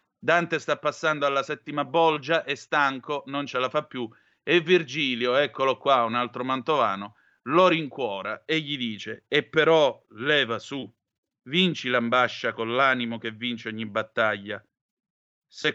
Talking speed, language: 145 wpm, Italian